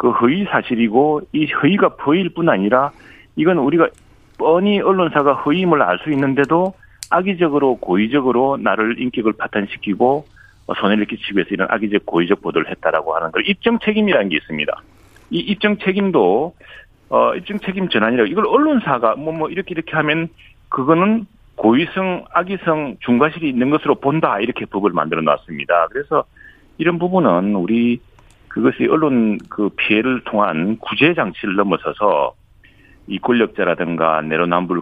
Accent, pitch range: native, 105-170 Hz